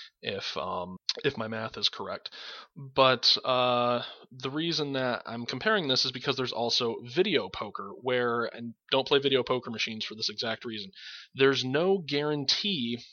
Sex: male